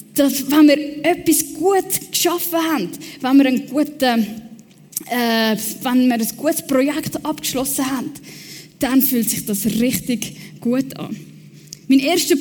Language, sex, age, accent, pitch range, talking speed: German, female, 10-29, Swiss, 250-300 Hz, 130 wpm